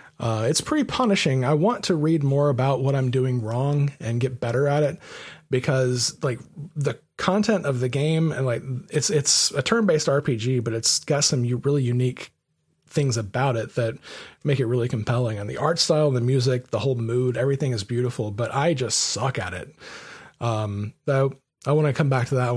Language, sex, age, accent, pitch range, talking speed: English, male, 30-49, American, 125-150 Hz, 200 wpm